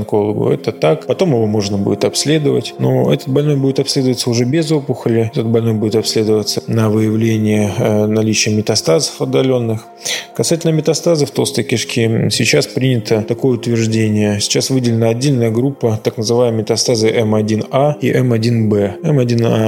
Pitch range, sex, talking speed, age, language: 110-130 Hz, male, 135 wpm, 20-39, Russian